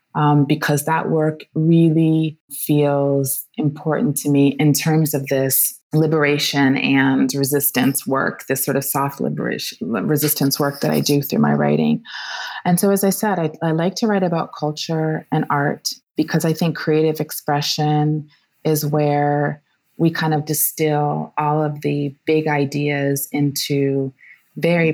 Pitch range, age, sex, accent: 140-155 Hz, 20-39, female, American